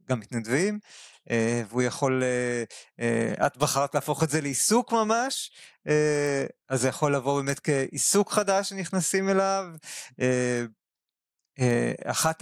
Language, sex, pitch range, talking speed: Hebrew, male, 130-175 Hz, 100 wpm